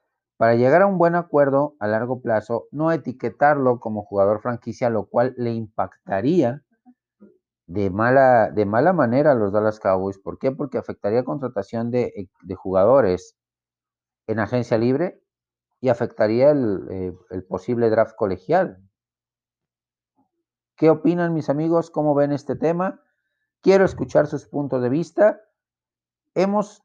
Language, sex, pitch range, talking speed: Spanish, male, 115-160 Hz, 135 wpm